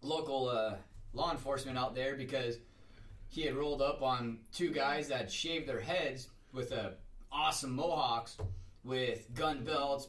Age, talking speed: 20-39, 150 wpm